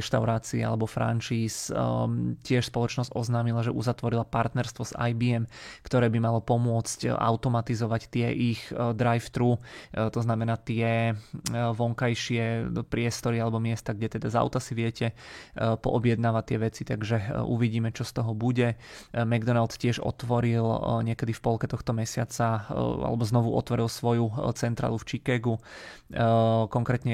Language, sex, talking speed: Czech, male, 125 wpm